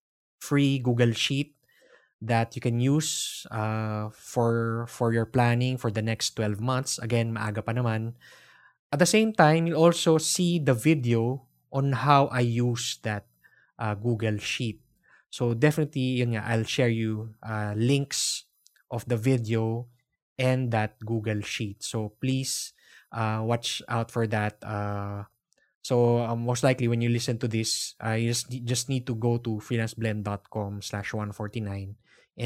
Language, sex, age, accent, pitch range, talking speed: English, male, 20-39, Filipino, 110-130 Hz, 150 wpm